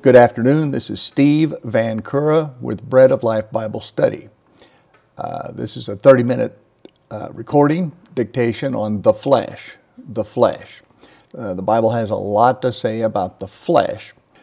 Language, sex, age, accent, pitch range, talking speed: English, male, 50-69, American, 110-130 Hz, 155 wpm